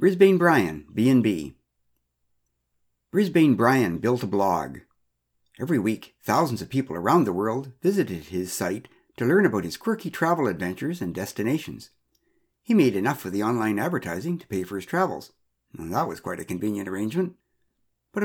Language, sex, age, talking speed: English, male, 60-79, 160 wpm